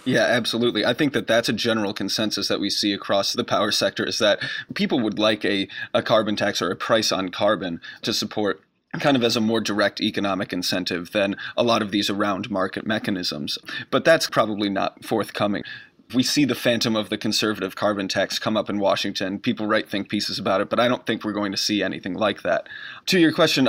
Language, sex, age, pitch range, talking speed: English, male, 30-49, 105-120 Hz, 220 wpm